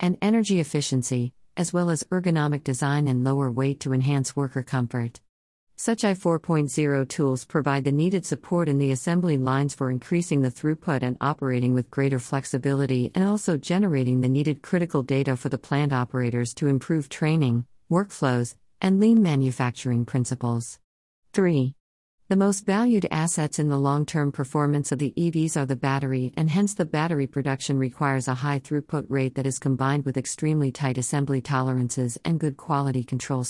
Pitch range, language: 130-155 Hz, English